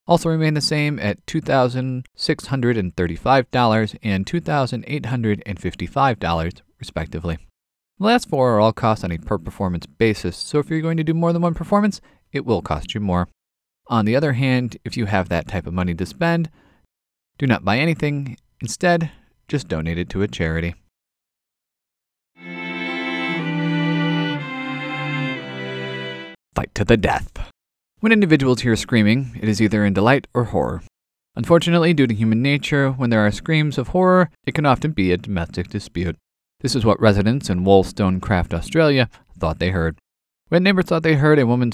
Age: 30-49